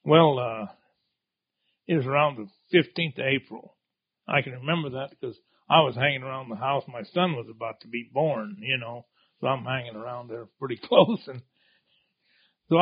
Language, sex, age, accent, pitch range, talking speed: English, male, 60-79, American, 130-170 Hz, 180 wpm